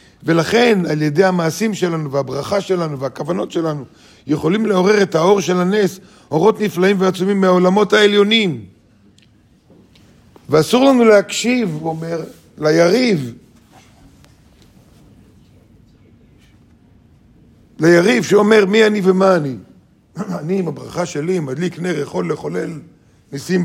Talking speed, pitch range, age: 105 wpm, 140-190 Hz, 50-69